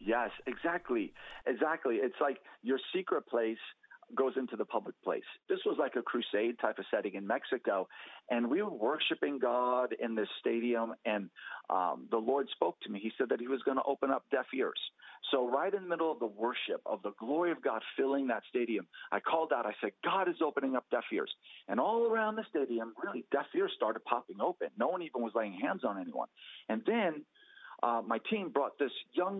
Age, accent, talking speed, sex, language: 50-69, American, 210 wpm, male, English